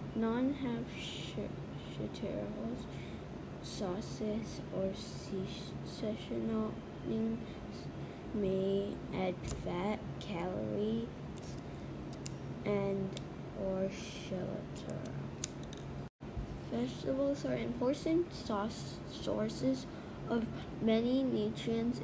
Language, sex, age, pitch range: English, female, 20-39, 195-240 Hz